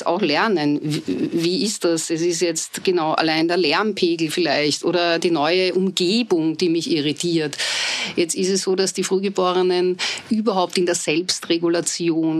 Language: German